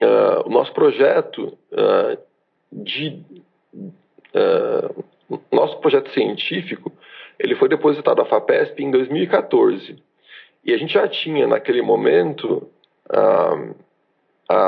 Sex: male